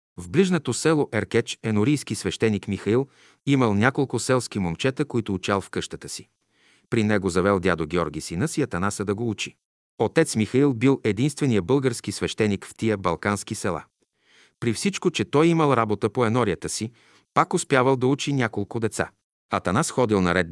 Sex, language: male, Bulgarian